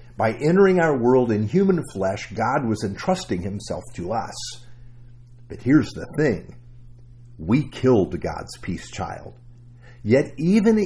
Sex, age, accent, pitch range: male, 50-69, American, 110-145 Hz